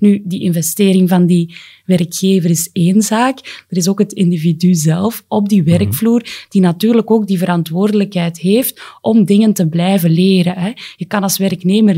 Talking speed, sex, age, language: 170 wpm, female, 20-39, Dutch